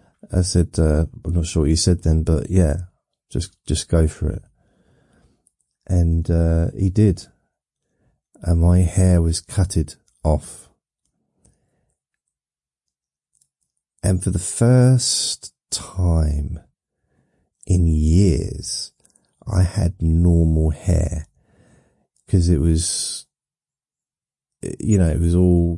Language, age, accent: English, 40-59, British